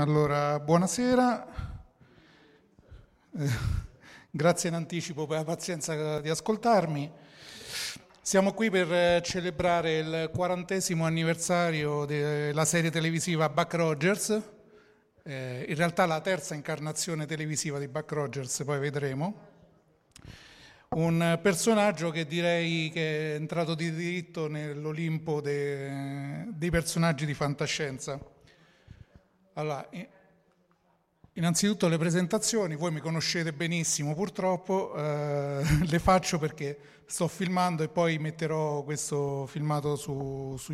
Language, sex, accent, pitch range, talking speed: Italian, male, native, 150-180 Hz, 105 wpm